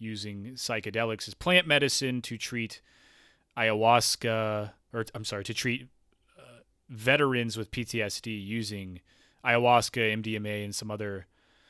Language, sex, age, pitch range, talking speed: English, male, 20-39, 105-125 Hz, 120 wpm